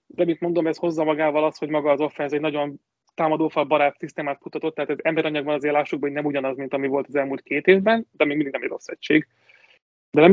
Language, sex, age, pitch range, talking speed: Hungarian, male, 30-49, 145-175 Hz, 240 wpm